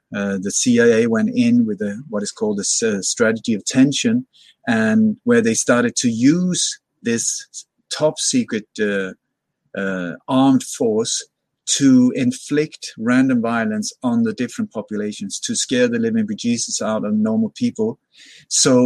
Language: English